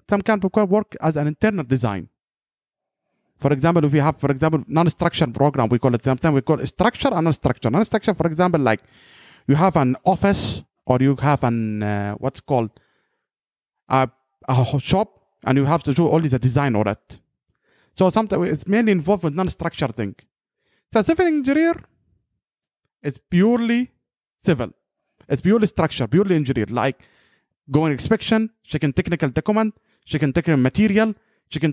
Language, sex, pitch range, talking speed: English, male, 135-200 Hz, 160 wpm